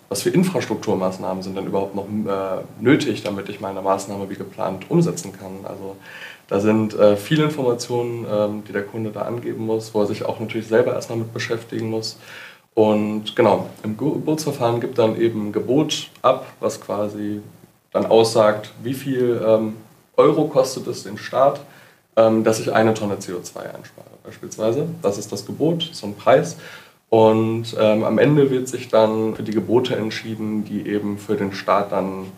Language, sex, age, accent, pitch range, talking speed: German, male, 20-39, German, 100-115 Hz, 175 wpm